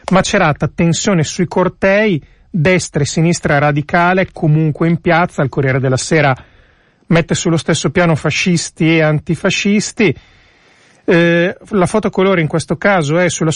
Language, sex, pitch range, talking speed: Italian, male, 145-180 Hz, 135 wpm